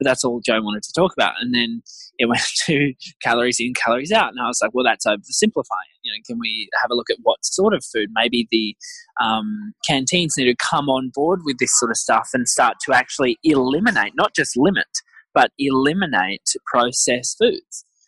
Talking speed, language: 200 wpm, English